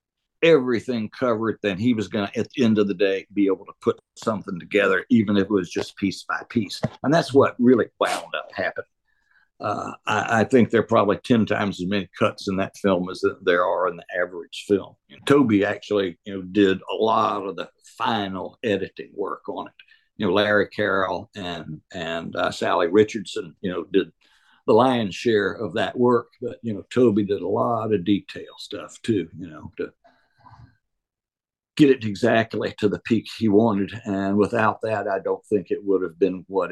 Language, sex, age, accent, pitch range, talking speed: English, male, 60-79, American, 95-115 Hz, 200 wpm